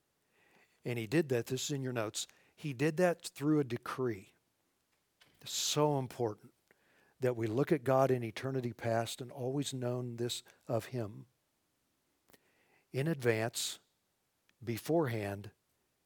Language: English